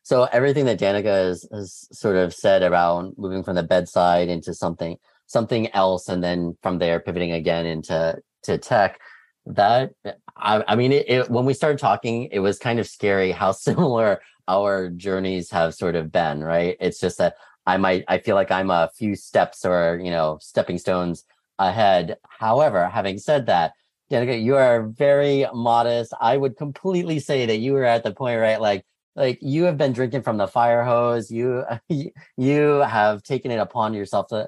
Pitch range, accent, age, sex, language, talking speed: 95-120 Hz, American, 30-49, male, English, 185 wpm